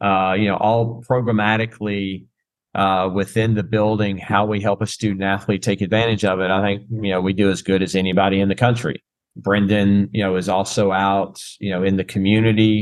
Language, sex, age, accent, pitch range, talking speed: English, male, 40-59, American, 95-110 Hz, 200 wpm